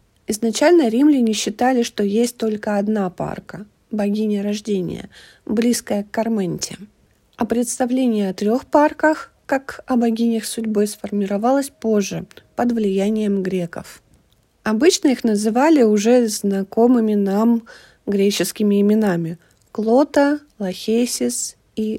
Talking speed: 105 wpm